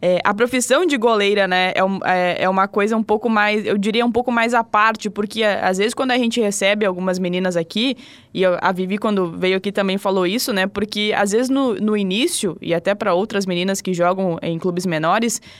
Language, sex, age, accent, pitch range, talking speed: Portuguese, female, 20-39, Brazilian, 195-240 Hz, 230 wpm